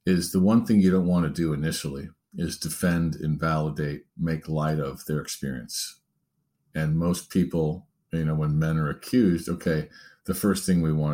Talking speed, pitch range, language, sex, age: 180 wpm, 80-95 Hz, English, male, 50-69